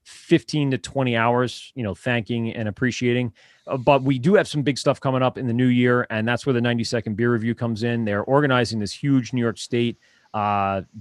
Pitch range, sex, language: 110-130 Hz, male, English